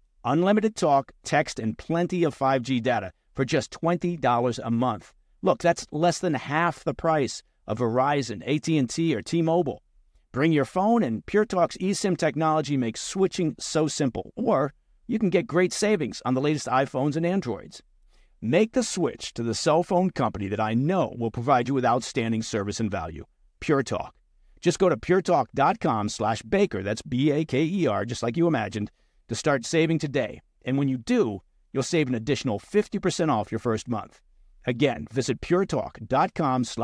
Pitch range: 115-165 Hz